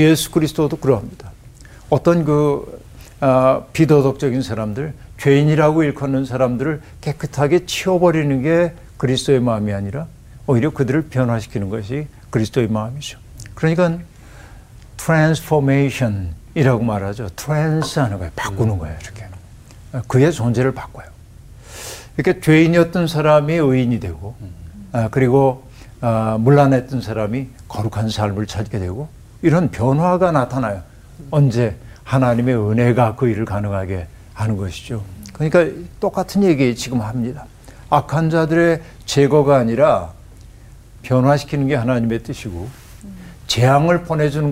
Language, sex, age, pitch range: Korean, male, 60-79, 110-150 Hz